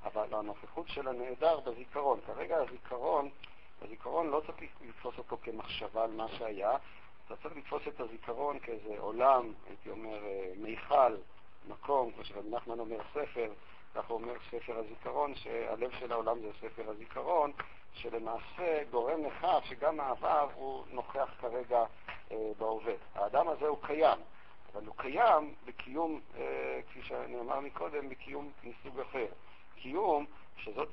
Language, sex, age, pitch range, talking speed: Hebrew, male, 50-69, 110-145 Hz, 130 wpm